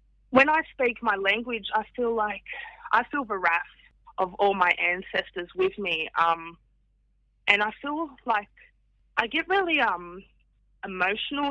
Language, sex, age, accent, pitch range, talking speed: English, female, 20-39, Australian, 175-215 Hz, 145 wpm